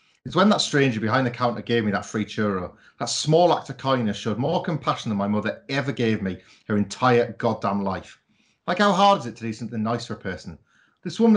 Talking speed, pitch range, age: 230 wpm, 115-175 Hz, 30-49